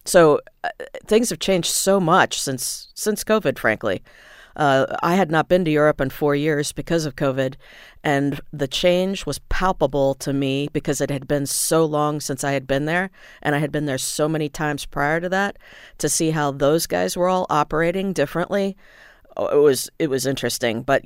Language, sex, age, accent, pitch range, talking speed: English, female, 40-59, American, 135-165 Hz, 195 wpm